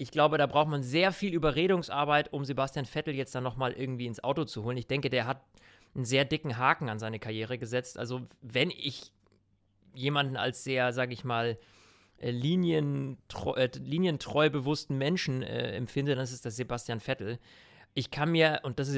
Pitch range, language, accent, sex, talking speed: 125-150 Hz, German, German, male, 190 wpm